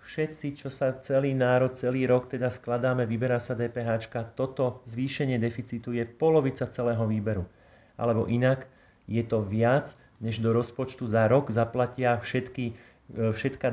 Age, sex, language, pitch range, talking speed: 30-49, male, Slovak, 115-130 Hz, 135 wpm